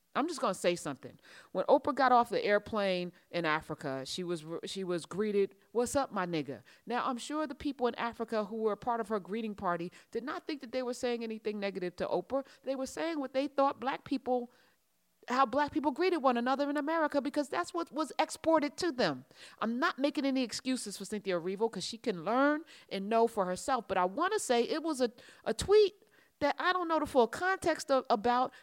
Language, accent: English, American